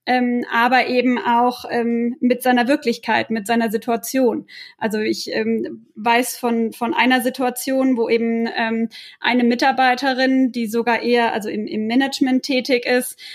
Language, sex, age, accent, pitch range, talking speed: German, female, 20-39, German, 230-260 Hz, 150 wpm